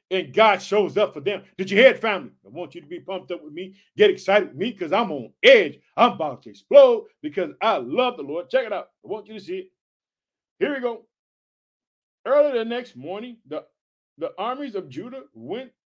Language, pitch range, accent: English, 190-265 Hz, American